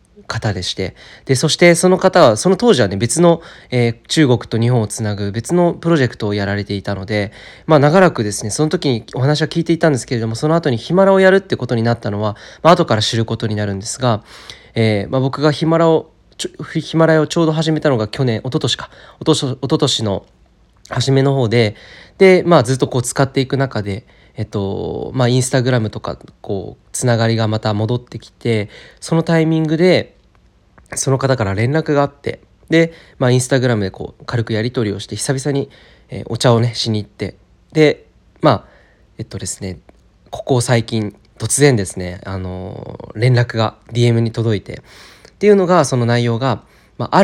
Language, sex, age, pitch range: Japanese, male, 20-39, 105-150 Hz